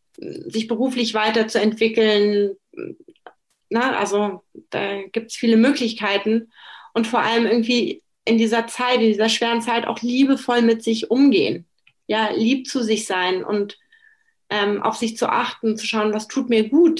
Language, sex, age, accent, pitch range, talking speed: German, female, 30-49, German, 205-250 Hz, 150 wpm